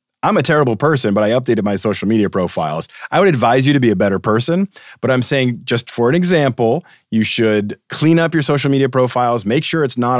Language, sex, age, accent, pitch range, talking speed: English, male, 30-49, American, 105-145 Hz, 230 wpm